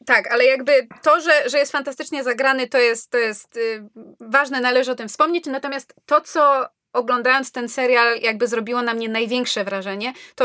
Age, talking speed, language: 20-39, 180 wpm, Polish